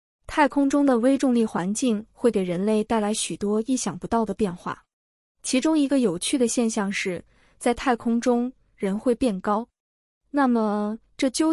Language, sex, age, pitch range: Chinese, female, 20-39, 205-260 Hz